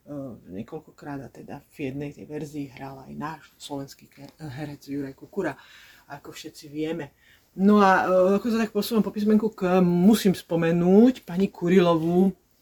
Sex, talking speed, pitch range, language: female, 145 wpm, 155-175 Hz, Slovak